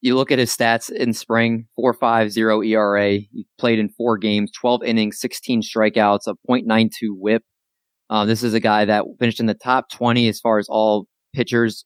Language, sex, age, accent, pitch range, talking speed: English, male, 20-39, American, 105-125 Hz, 195 wpm